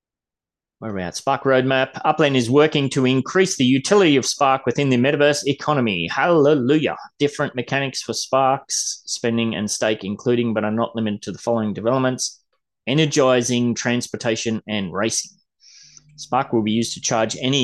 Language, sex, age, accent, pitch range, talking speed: English, male, 30-49, Australian, 110-130 Hz, 150 wpm